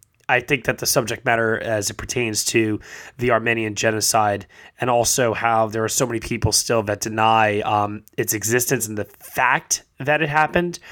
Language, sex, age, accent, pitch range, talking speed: English, male, 20-39, American, 105-125 Hz, 180 wpm